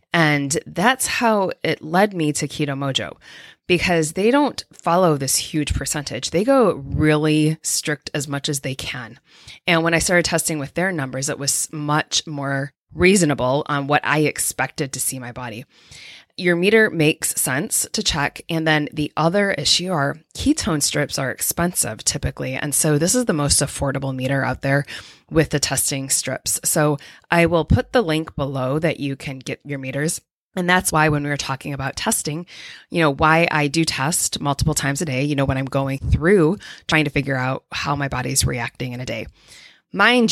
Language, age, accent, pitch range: English, 20-39, American, 140-170 Hz